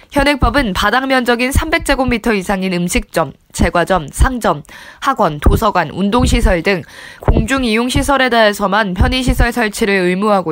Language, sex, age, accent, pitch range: Korean, female, 20-39, native, 195-260 Hz